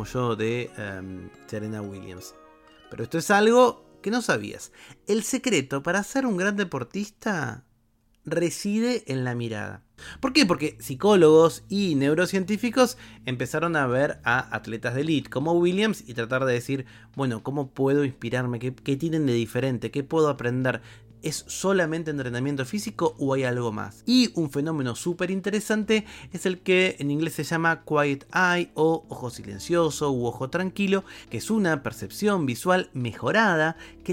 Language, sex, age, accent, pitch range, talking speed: Spanish, male, 30-49, Argentinian, 120-190 Hz, 160 wpm